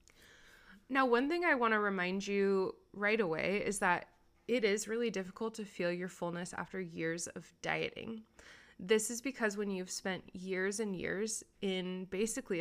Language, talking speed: English, 165 wpm